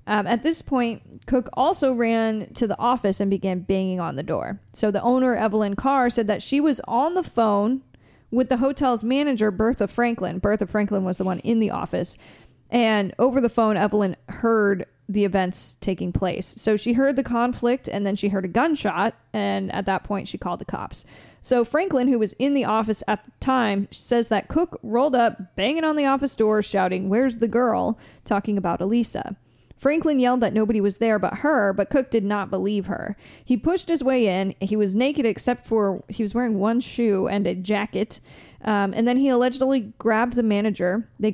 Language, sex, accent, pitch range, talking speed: English, female, American, 200-250 Hz, 200 wpm